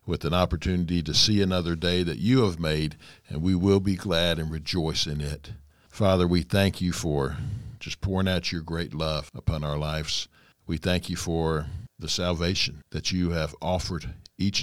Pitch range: 80-100 Hz